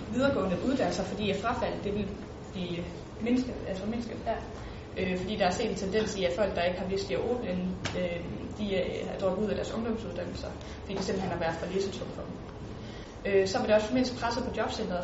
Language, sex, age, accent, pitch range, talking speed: Danish, female, 20-39, native, 190-235 Hz, 215 wpm